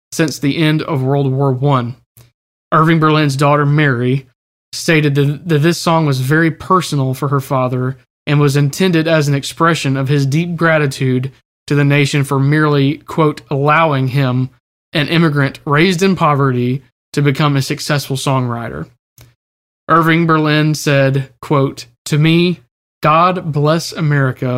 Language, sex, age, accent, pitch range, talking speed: English, male, 20-39, American, 130-155 Hz, 140 wpm